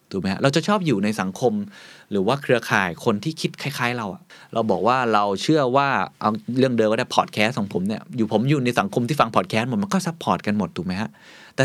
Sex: male